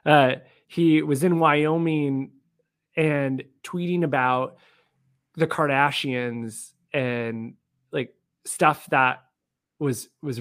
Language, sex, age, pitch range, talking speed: English, male, 20-39, 135-170 Hz, 90 wpm